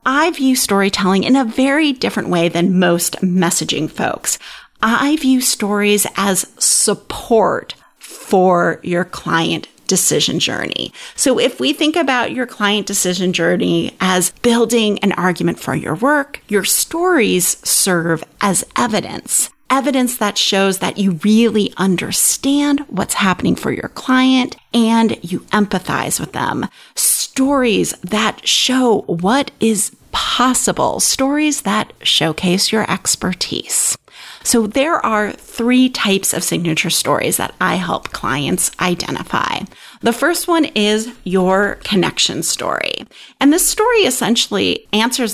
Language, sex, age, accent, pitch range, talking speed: English, female, 30-49, American, 190-255 Hz, 125 wpm